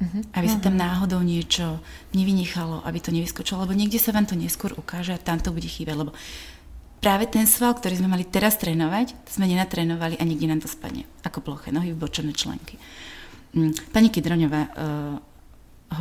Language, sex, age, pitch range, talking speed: Slovak, female, 30-49, 155-185 Hz, 170 wpm